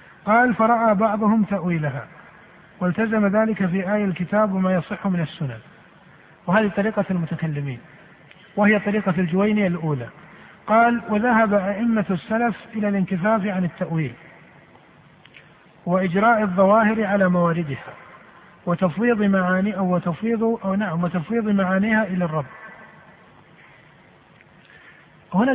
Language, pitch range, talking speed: Arabic, 175-220 Hz, 100 wpm